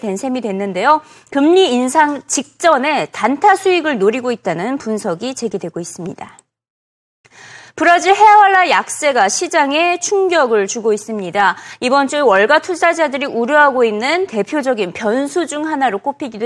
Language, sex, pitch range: Korean, female, 220-330 Hz